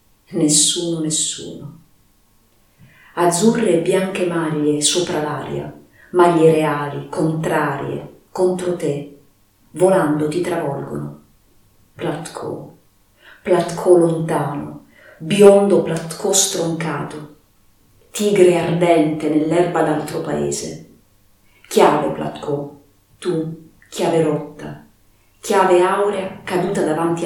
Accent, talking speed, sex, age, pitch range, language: native, 80 wpm, female, 40-59, 140-180 Hz, Italian